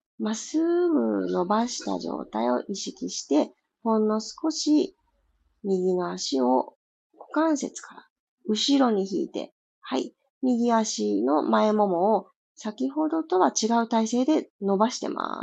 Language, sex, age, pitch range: Japanese, female, 40-59, 200-300 Hz